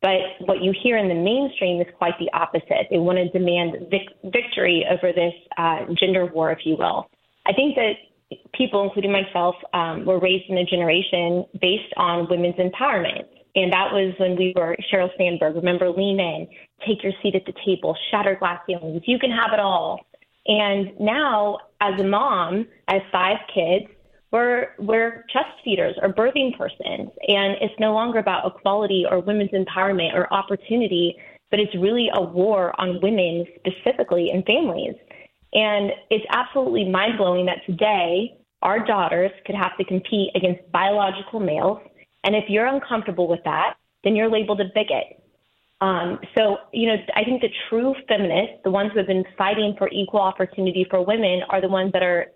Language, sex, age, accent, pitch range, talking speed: English, female, 20-39, American, 180-210 Hz, 175 wpm